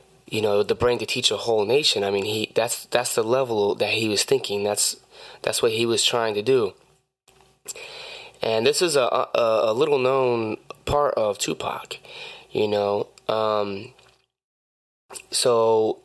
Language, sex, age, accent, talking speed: English, male, 20-39, American, 155 wpm